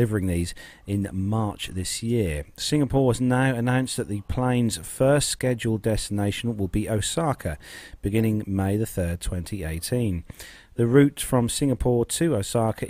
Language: English